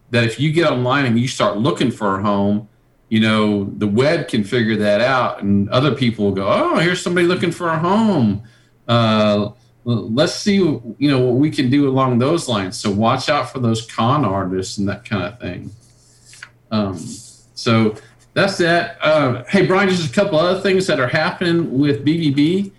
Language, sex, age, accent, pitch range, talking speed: English, male, 50-69, American, 110-145 Hz, 190 wpm